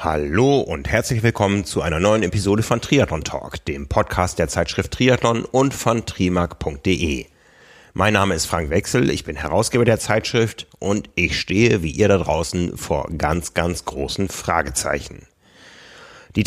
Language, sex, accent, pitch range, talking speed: German, male, German, 85-110 Hz, 155 wpm